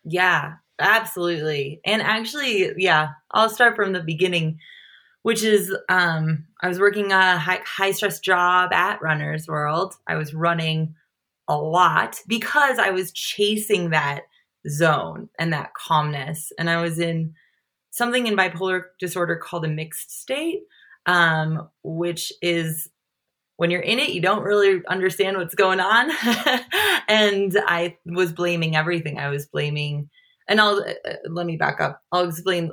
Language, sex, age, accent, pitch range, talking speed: English, female, 20-39, American, 160-205 Hz, 150 wpm